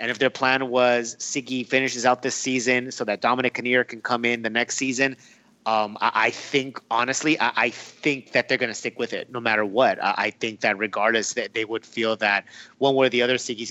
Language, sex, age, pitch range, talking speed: English, male, 30-49, 115-135 Hz, 235 wpm